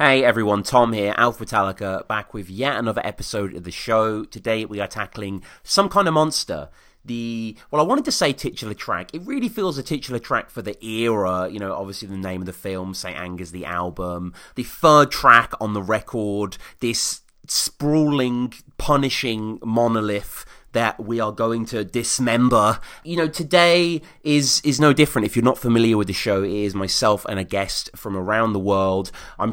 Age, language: 30-49, English